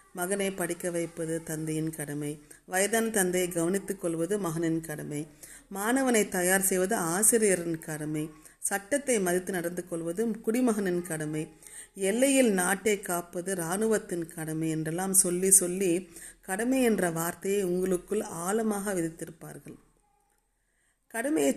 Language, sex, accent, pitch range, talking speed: Tamil, female, native, 170-220 Hz, 105 wpm